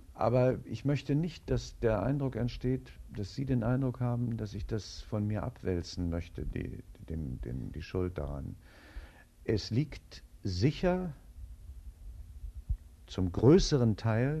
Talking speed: 125 wpm